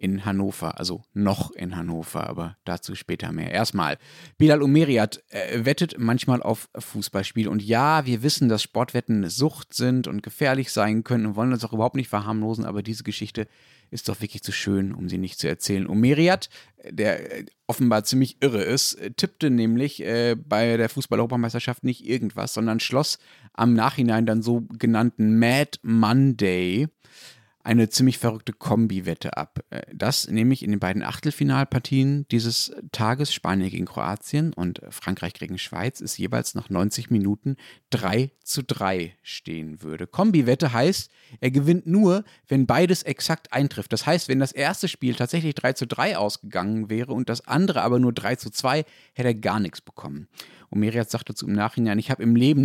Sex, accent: male, German